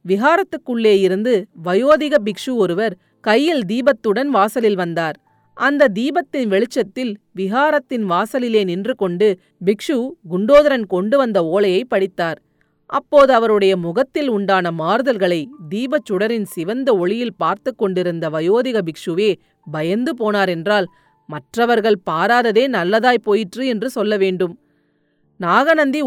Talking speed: 100 wpm